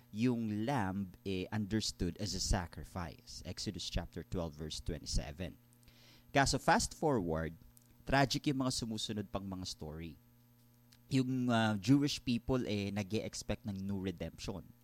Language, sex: Filipino, male